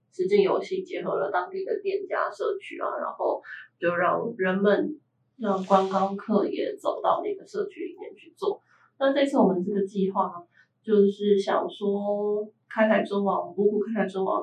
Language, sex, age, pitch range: Chinese, female, 20-39, 195-280 Hz